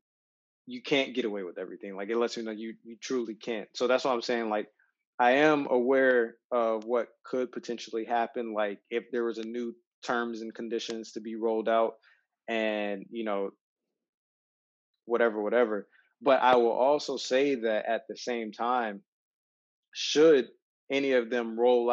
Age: 20-39